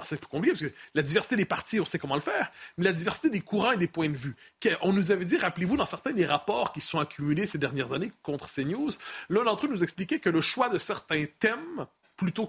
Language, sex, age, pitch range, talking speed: French, male, 30-49, 165-220 Hz, 255 wpm